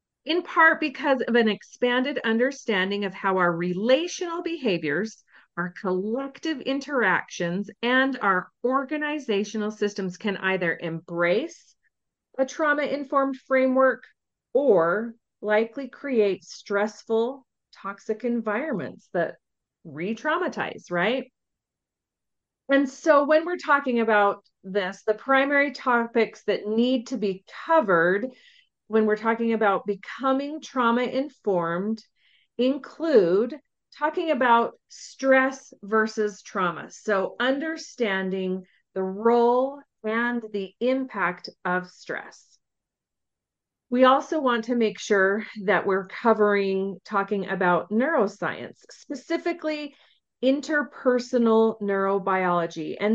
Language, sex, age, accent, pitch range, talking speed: English, female, 40-59, American, 195-270 Hz, 95 wpm